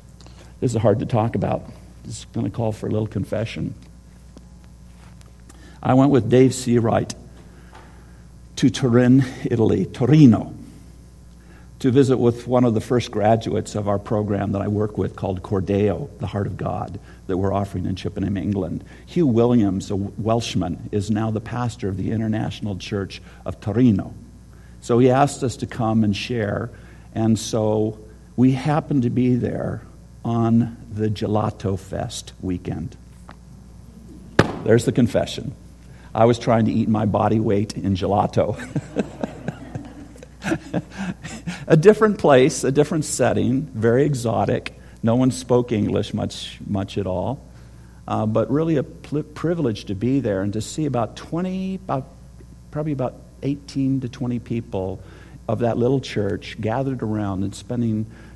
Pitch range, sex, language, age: 95-125 Hz, male, English, 50-69